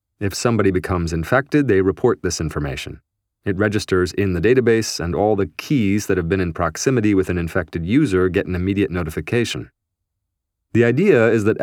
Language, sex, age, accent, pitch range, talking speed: English, male, 30-49, American, 95-115 Hz, 175 wpm